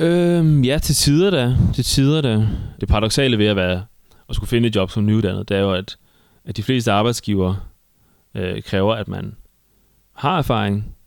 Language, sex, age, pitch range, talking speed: Danish, male, 20-39, 95-110 Hz, 185 wpm